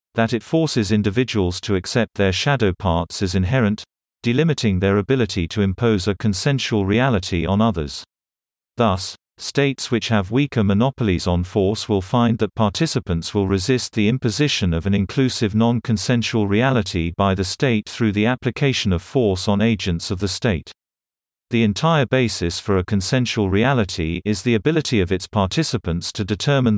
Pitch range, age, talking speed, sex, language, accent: 95-120 Hz, 40-59, 155 wpm, male, English, British